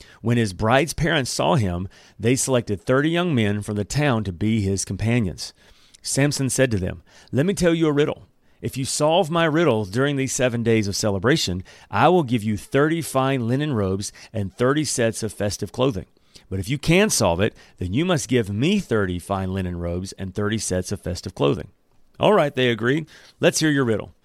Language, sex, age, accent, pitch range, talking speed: English, male, 40-59, American, 105-155 Hz, 205 wpm